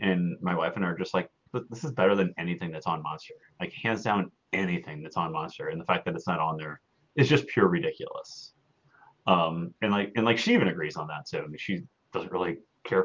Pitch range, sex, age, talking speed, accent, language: 95-135 Hz, male, 30-49, 240 wpm, American, English